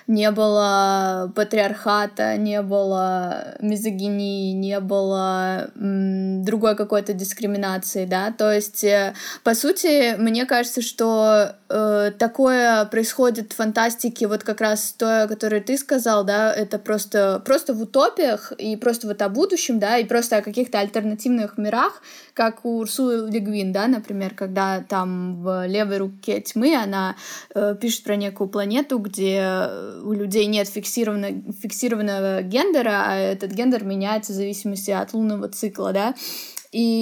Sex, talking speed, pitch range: female, 140 wpm, 200-230 Hz